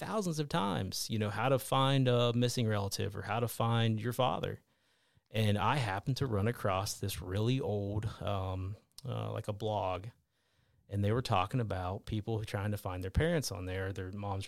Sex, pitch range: male, 100-120 Hz